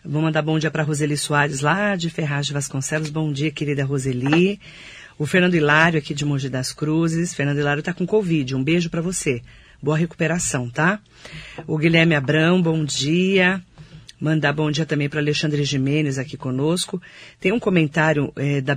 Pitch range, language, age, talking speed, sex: 145-180 Hz, Portuguese, 50-69, 175 wpm, female